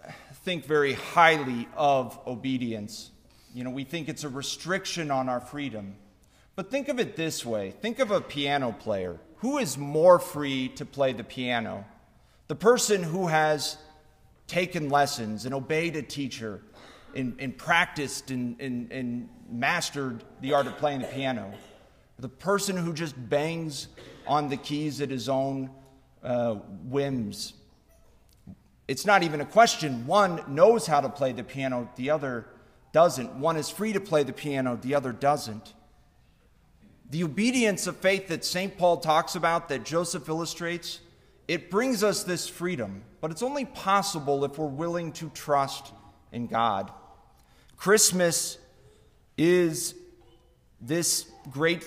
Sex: male